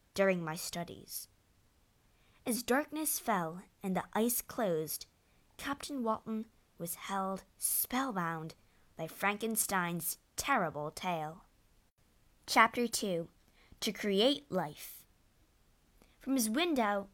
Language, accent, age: Chinese, American, 20-39